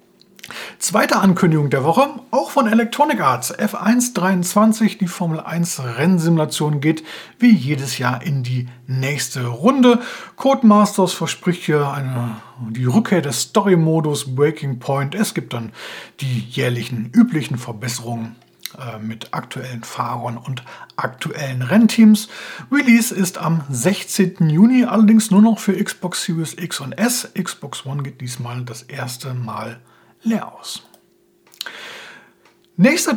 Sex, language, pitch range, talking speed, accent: male, German, 140-210 Hz, 125 wpm, German